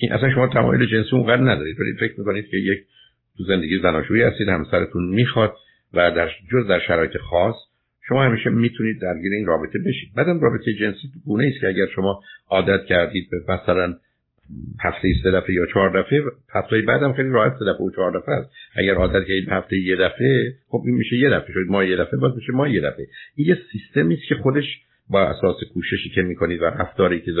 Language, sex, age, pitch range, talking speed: Persian, male, 60-79, 90-120 Hz, 175 wpm